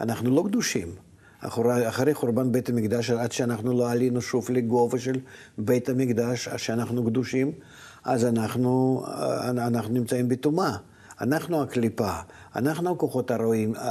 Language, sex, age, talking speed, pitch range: Hebrew, male, 50-69, 130 wpm, 110-135 Hz